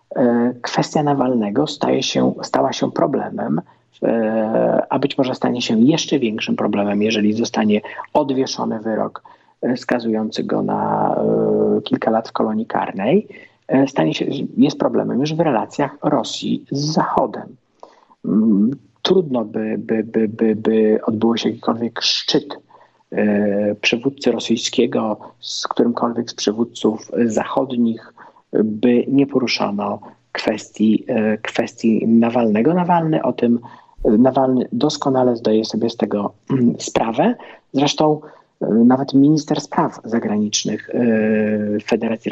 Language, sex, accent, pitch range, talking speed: Polish, male, native, 110-130 Hz, 105 wpm